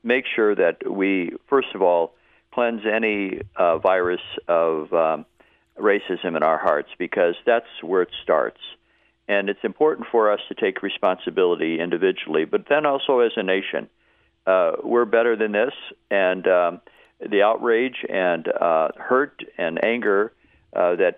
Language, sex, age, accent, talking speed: English, male, 50-69, American, 150 wpm